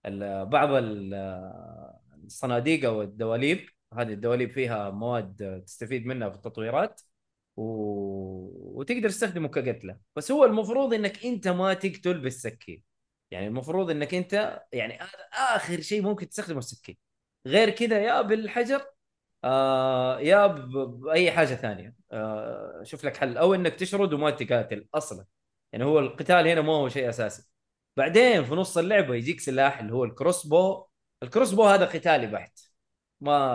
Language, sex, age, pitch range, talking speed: Arabic, male, 20-39, 110-175 Hz, 130 wpm